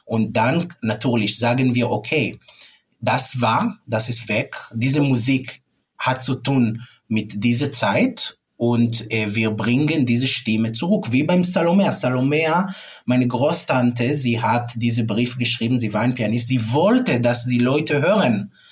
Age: 30-49